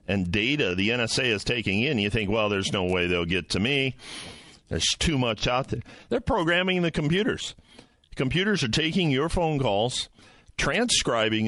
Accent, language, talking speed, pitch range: American, English, 170 wpm, 100-130 Hz